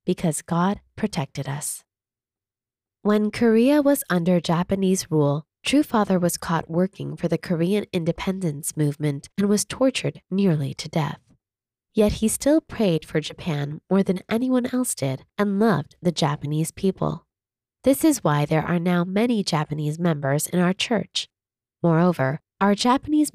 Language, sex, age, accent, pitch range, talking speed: English, female, 20-39, American, 150-205 Hz, 145 wpm